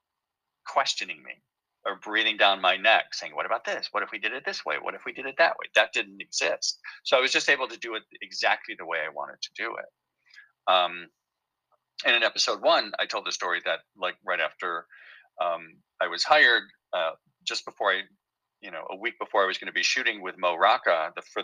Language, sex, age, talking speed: English, male, 40-59, 225 wpm